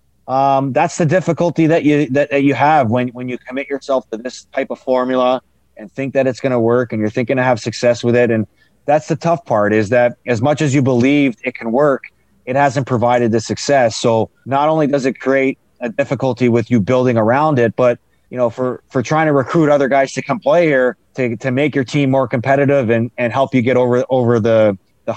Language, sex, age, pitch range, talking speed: English, male, 30-49, 120-140 Hz, 235 wpm